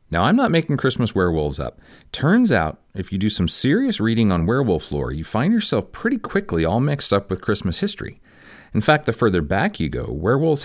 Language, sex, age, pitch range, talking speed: English, male, 40-59, 80-120 Hz, 210 wpm